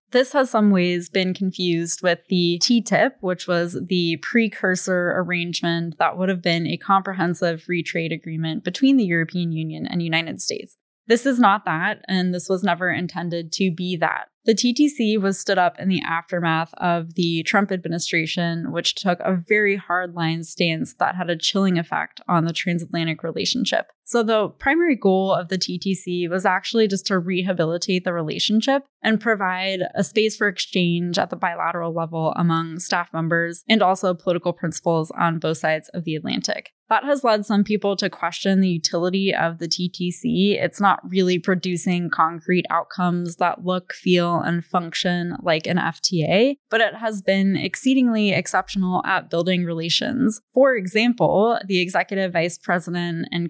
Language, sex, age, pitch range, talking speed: English, female, 10-29, 170-200 Hz, 165 wpm